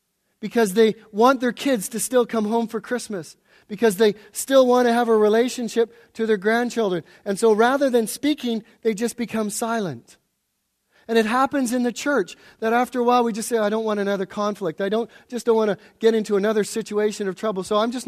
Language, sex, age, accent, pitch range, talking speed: English, male, 40-59, American, 195-235 Hz, 210 wpm